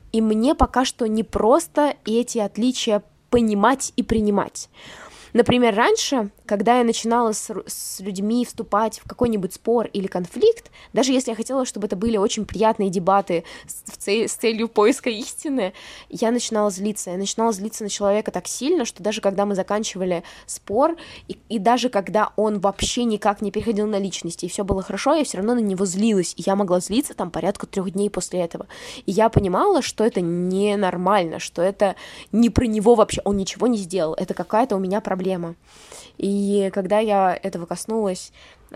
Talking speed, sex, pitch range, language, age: 180 wpm, female, 195-230 Hz, Russian, 20-39